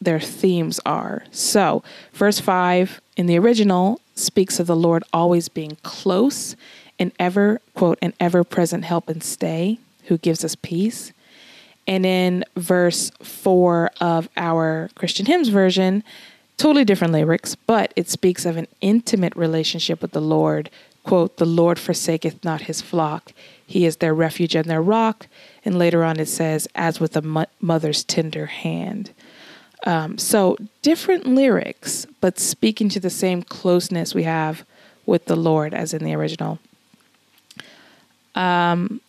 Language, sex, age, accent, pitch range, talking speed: English, female, 20-39, American, 165-205 Hz, 150 wpm